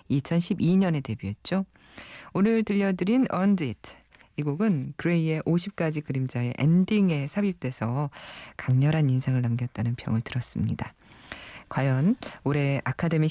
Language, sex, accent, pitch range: Korean, female, native, 135-210 Hz